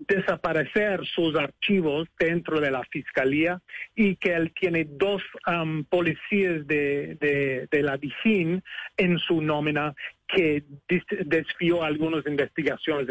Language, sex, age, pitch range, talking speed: Spanish, male, 40-59, 150-180 Hz, 120 wpm